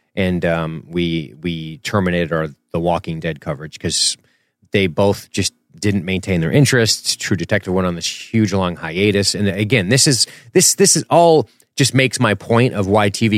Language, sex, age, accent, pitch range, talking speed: English, male, 30-49, American, 90-115 Hz, 185 wpm